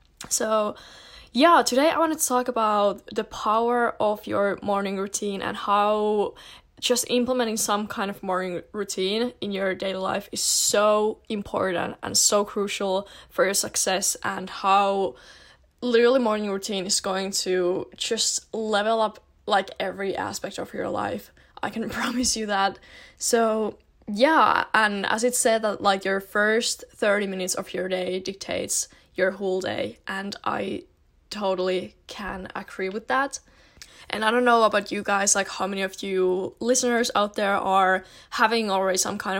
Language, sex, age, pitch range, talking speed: English, female, 10-29, 190-225 Hz, 160 wpm